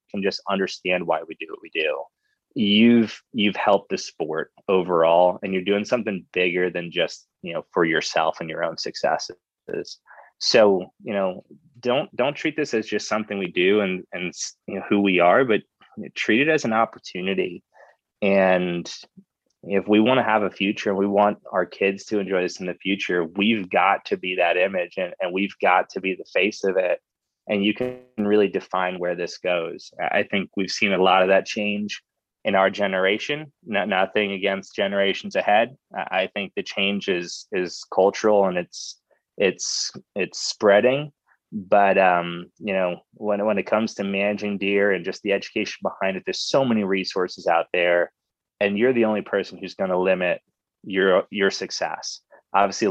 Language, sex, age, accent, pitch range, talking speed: English, male, 20-39, American, 95-105 Hz, 185 wpm